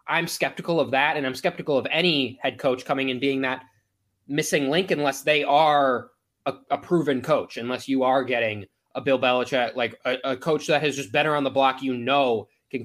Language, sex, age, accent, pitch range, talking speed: English, male, 20-39, American, 125-145 Hz, 210 wpm